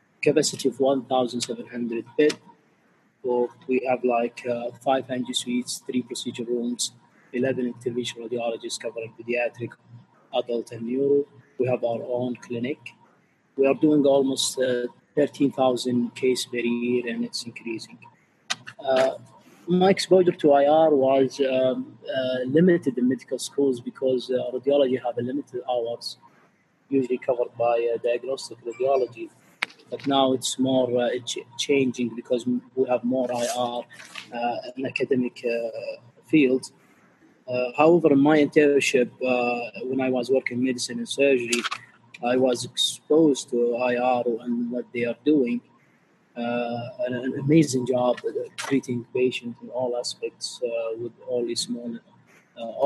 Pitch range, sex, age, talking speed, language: 120-135 Hz, male, 30-49, 135 wpm, English